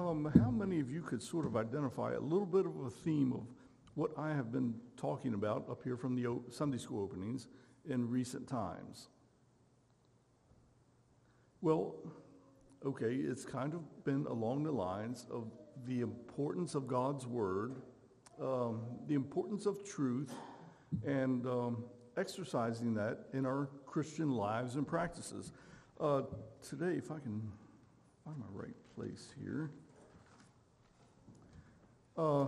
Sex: male